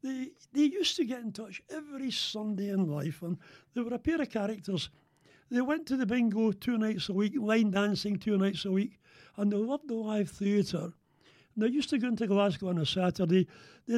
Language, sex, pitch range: English, male, 180-230 Hz